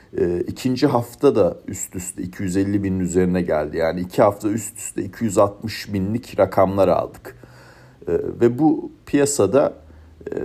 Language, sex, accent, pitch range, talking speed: Turkish, male, native, 90-125 Hz, 140 wpm